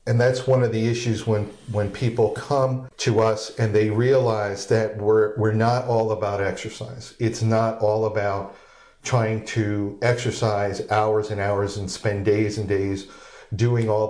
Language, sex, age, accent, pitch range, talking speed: English, male, 50-69, American, 105-115 Hz, 165 wpm